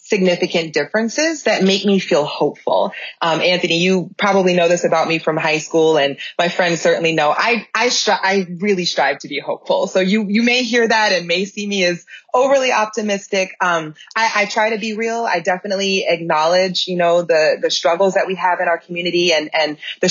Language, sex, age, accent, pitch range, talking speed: English, female, 20-39, American, 165-215 Hz, 205 wpm